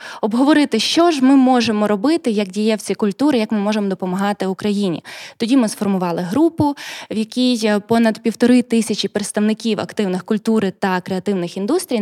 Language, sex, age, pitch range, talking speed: Ukrainian, female, 20-39, 205-260 Hz, 145 wpm